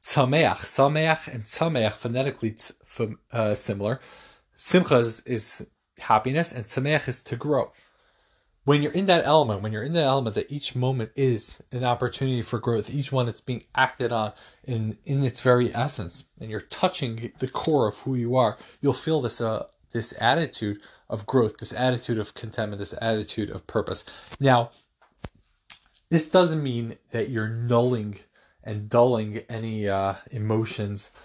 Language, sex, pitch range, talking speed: English, male, 105-125 Hz, 160 wpm